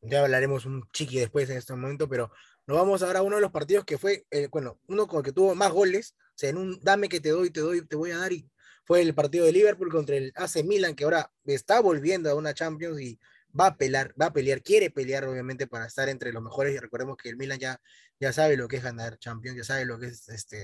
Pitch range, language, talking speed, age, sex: 130-160 Hz, Spanish, 270 wpm, 20-39, male